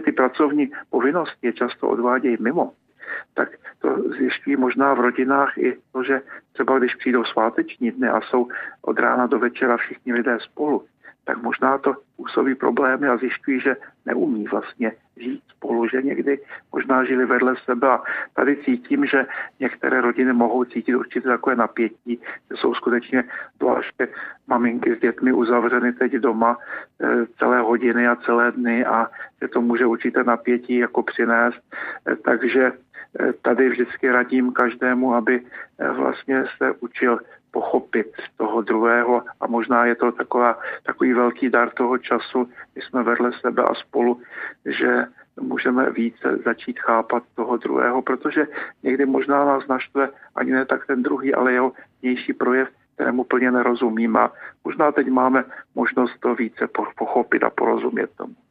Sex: male